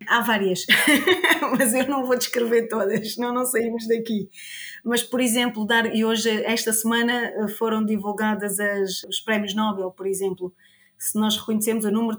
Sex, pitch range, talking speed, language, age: female, 200-225 Hz, 165 wpm, Portuguese, 20-39